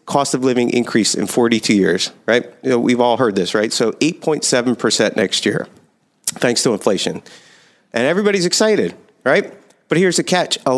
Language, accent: English, American